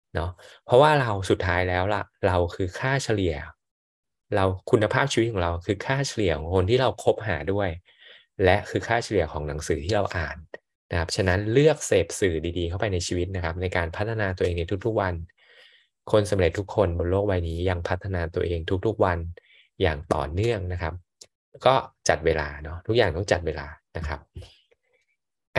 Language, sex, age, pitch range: Thai, male, 20-39, 85-115 Hz